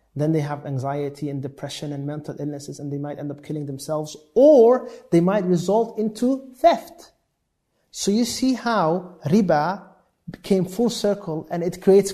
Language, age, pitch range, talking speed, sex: English, 30-49, 145-185 Hz, 165 wpm, male